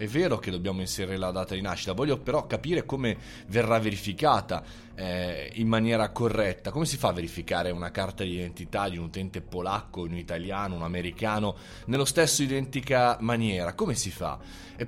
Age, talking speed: 20-39, 180 wpm